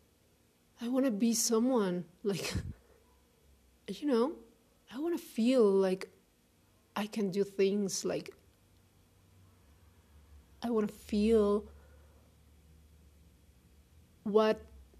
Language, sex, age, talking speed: English, female, 30-49, 90 wpm